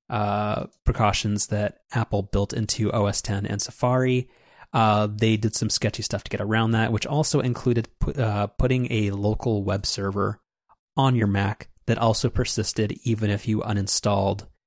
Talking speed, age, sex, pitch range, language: 160 wpm, 30-49, male, 105-115 Hz, English